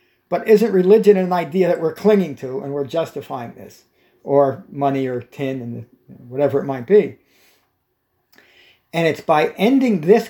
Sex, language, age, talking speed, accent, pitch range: male, English, 50-69, 155 wpm, American, 140-190 Hz